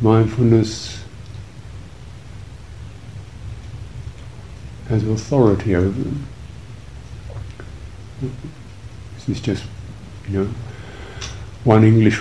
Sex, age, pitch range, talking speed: male, 50-69, 105-115 Hz, 60 wpm